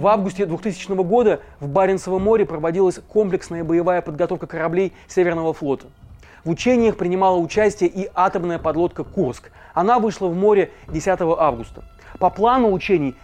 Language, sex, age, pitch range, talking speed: Russian, male, 30-49, 170-210 Hz, 140 wpm